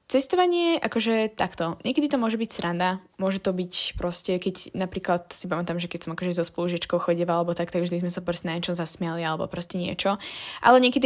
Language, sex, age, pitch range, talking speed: Slovak, female, 10-29, 175-220 Hz, 210 wpm